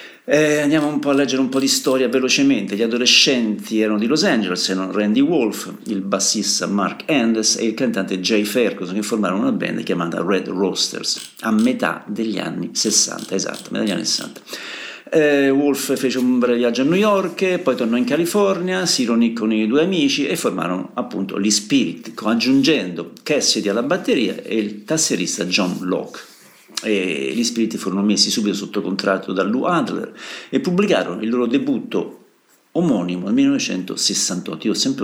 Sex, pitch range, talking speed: male, 105-140 Hz, 175 wpm